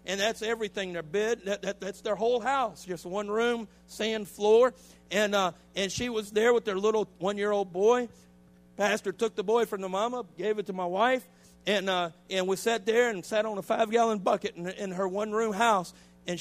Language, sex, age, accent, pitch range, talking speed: English, male, 50-69, American, 180-230 Hz, 210 wpm